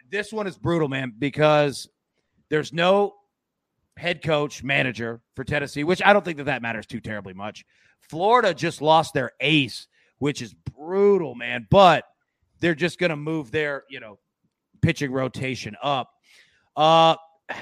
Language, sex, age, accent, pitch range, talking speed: English, male, 30-49, American, 120-160 Hz, 155 wpm